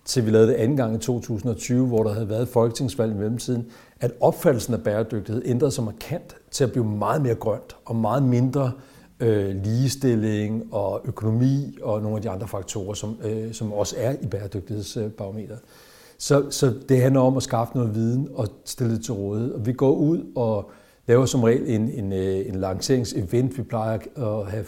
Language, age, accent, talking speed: Danish, 60-79, native, 190 wpm